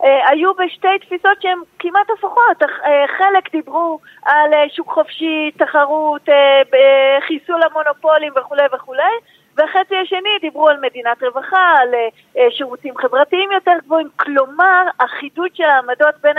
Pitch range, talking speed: 255-320 Hz, 115 wpm